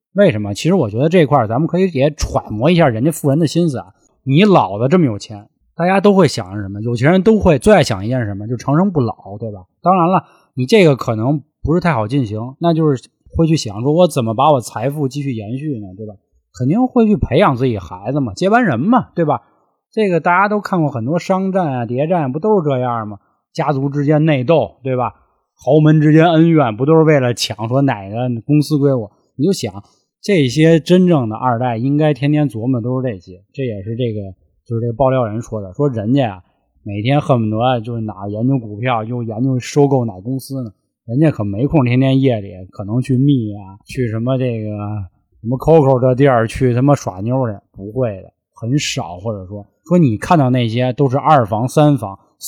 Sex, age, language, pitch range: male, 20-39, Chinese, 110-155 Hz